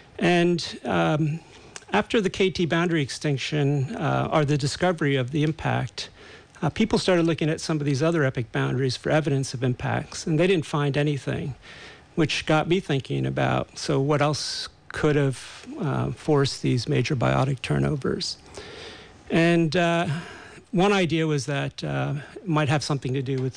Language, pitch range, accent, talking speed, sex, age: English, 135-160 Hz, American, 160 wpm, male, 50-69